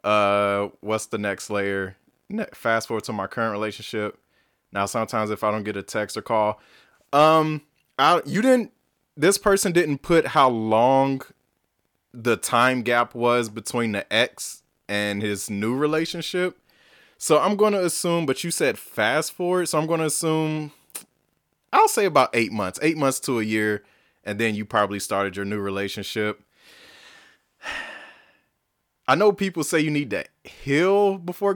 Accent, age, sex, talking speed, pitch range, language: American, 20-39, male, 160 wpm, 105-160 Hz, English